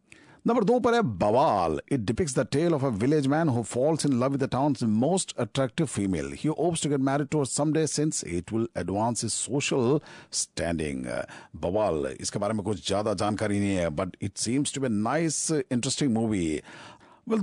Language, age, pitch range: Japanese, 50-69, 110-165 Hz